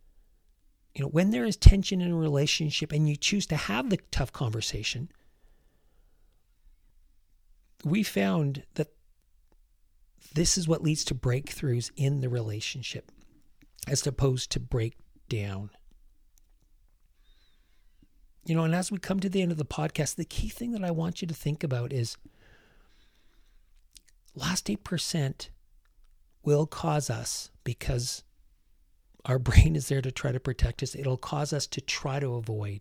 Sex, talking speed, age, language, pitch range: male, 145 wpm, 40-59, English, 95-150 Hz